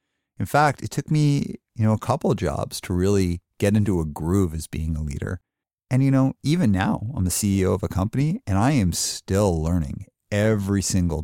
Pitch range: 85-110 Hz